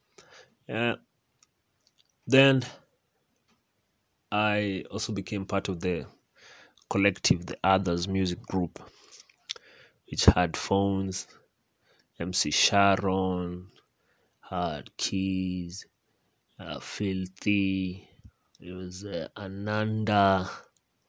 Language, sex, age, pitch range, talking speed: Swahili, male, 30-49, 95-115 Hz, 75 wpm